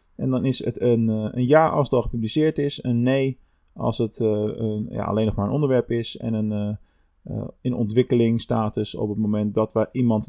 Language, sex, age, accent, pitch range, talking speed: Dutch, male, 20-39, Dutch, 110-145 Hz, 205 wpm